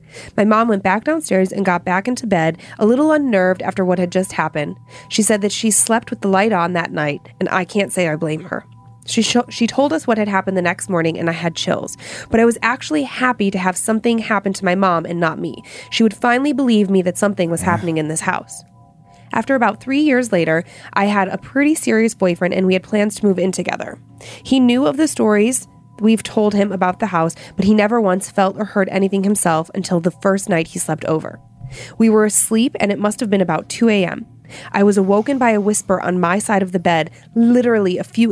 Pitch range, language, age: 175-220 Hz, English, 20-39